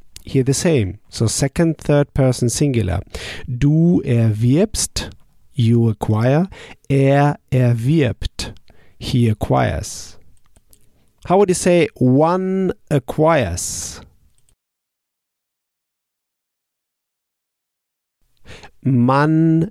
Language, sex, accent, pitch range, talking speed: German, male, German, 110-145 Hz, 65 wpm